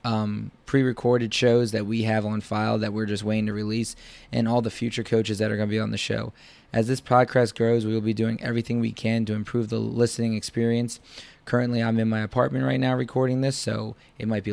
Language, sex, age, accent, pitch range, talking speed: English, male, 20-39, American, 110-120 Hz, 230 wpm